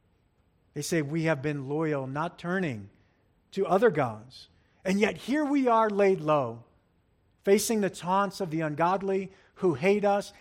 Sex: male